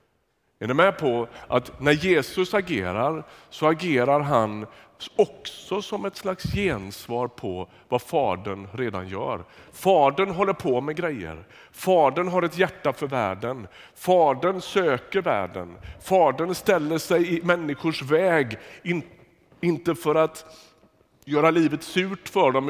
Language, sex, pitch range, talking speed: Swedish, male, 130-185 Hz, 130 wpm